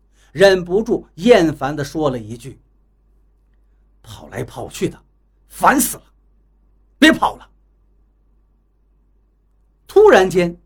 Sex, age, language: male, 50-69, Chinese